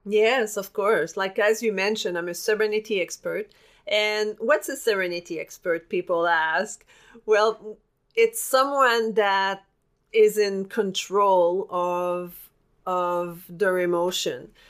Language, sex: English, female